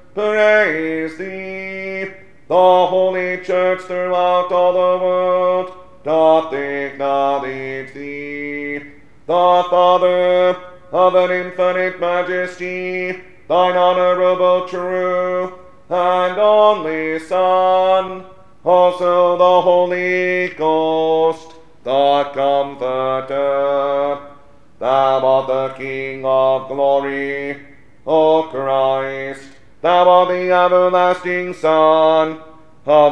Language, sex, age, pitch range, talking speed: English, male, 40-59, 135-180 Hz, 80 wpm